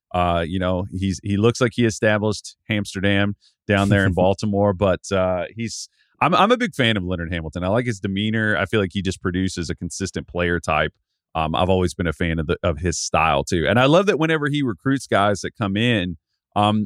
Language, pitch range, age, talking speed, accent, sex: English, 90-120 Hz, 30-49, 225 wpm, American, male